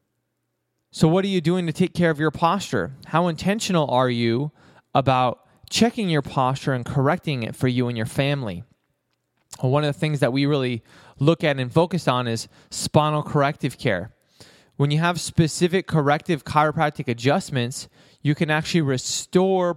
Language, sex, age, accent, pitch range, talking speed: English, male, 20-39, American, 135-170 Hz, 165 wpm